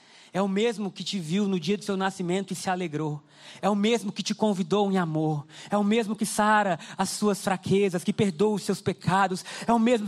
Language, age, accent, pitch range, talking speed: Portuguese, 20-39, Brazilian, 205-245 Hz, 225 wpm